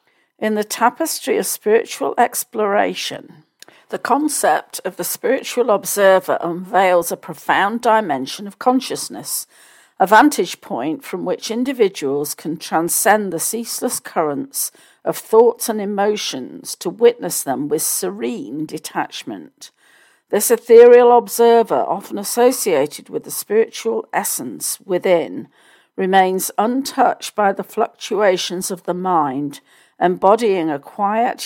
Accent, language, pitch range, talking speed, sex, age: British, English, 185-265 Hz, 115 wpm, female, 50-69